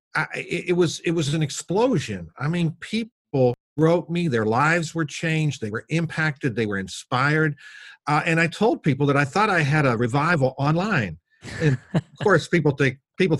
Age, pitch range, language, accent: 50-69, 110-155 Hz, English, American